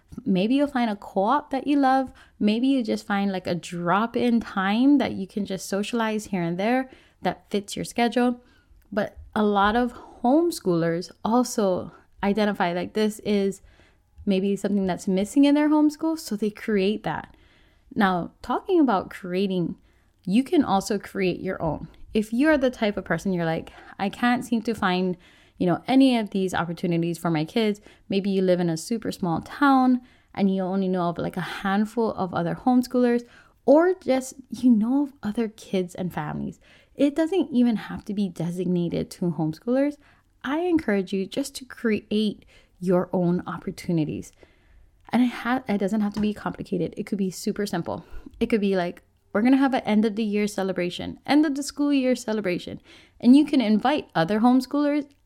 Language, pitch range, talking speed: English, 190-255 Hz, 180 wpm